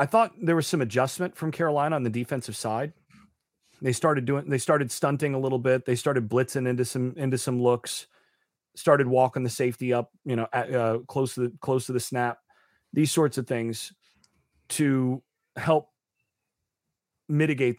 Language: English